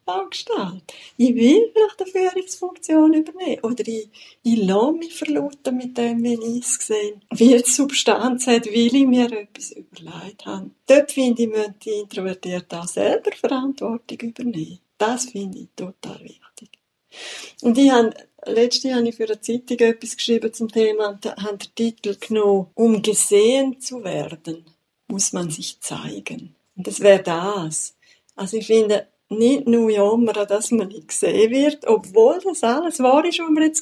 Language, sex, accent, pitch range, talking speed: German, female, Swiss, 210-275 Hz, 165 wpm